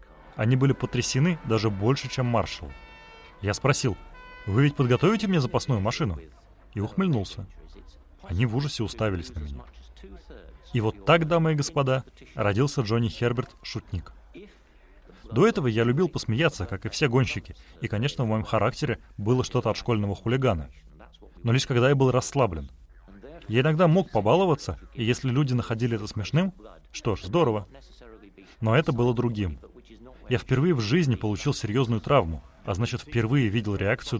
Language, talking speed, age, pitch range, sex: Russian, 150 wpm, 30-49, 100-135 Hz, male